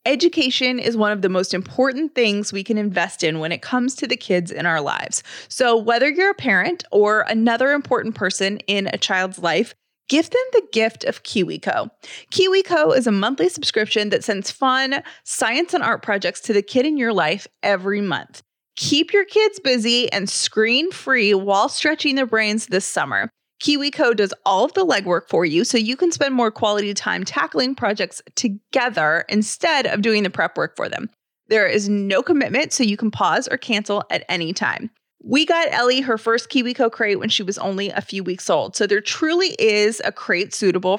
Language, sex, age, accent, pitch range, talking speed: English, female, 30-49, American, 200-270 Hz, 195 wpm